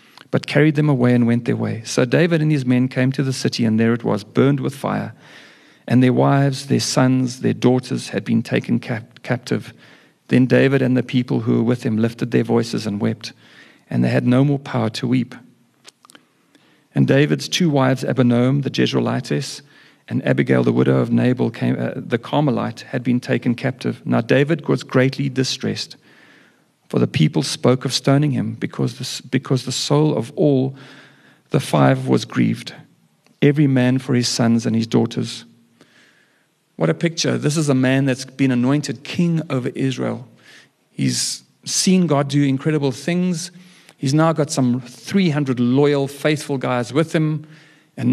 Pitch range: 120-145 Hz